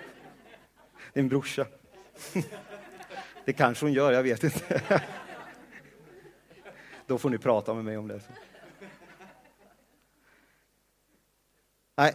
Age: 40-59